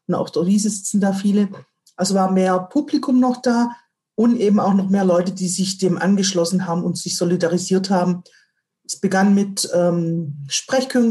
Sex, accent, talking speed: female, German, 165 wpm